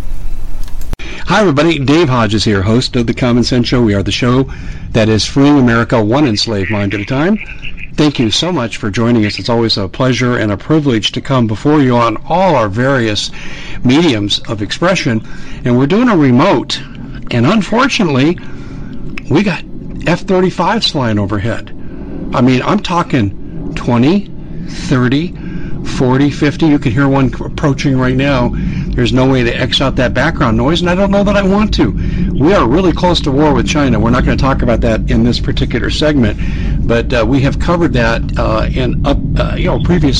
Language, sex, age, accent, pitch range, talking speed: English, male, 60-79, American, 115-150 Hz, 190 wpm